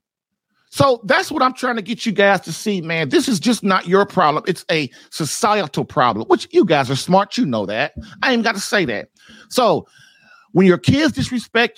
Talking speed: 210 wpm